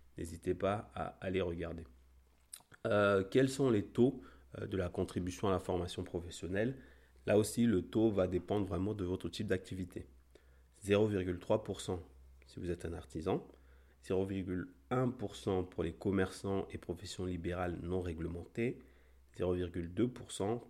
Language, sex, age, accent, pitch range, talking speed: French, male, 30-49, French, 85-105 Hz, 130 wpm